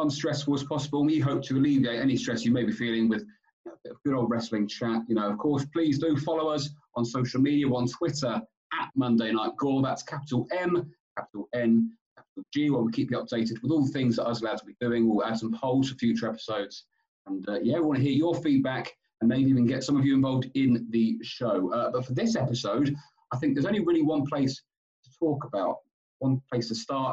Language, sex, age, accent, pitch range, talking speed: English, male, 30-49, British, 120-155 Hz, 235 wpm